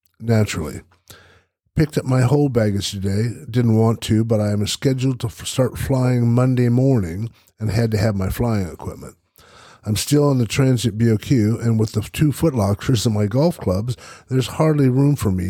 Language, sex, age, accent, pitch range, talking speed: English, male, 50-69, American, 100-120 Hz, 185 wpm